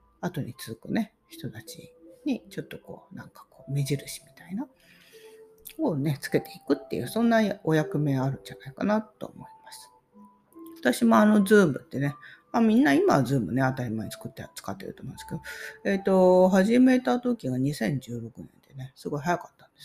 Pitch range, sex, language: 125-215 Hz, female, Japanese